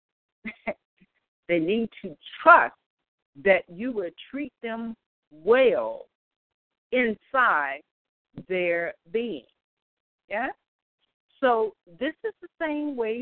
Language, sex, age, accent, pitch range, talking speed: English, female, 50-69, American, 160-250 Hz, 90 wpm